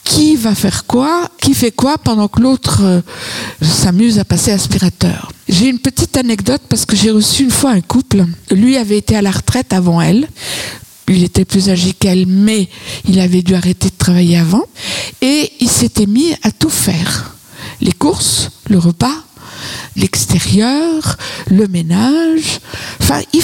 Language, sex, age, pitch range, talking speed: French, female, 60-79, 190-290 Hz, 160 wpm